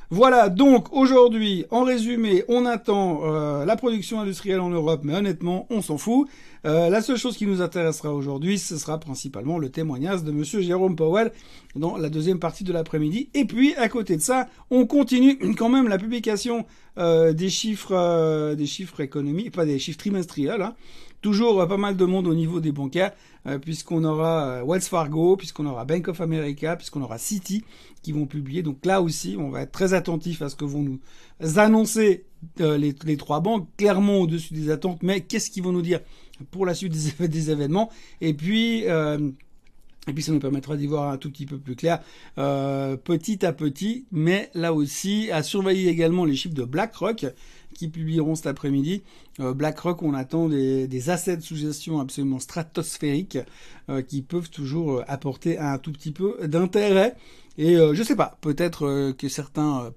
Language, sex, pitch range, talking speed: French, male, 150-195 Hz, 195 wpm